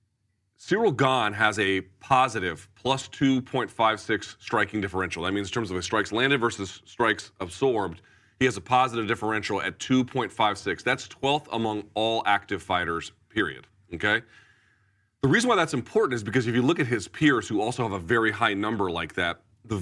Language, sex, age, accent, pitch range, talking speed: English, male, 40-59, American, 100-130 Hz, 175 wpm